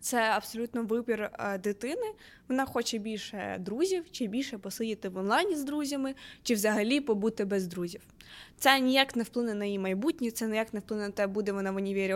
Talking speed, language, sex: 185 wpm, Ukrainian, female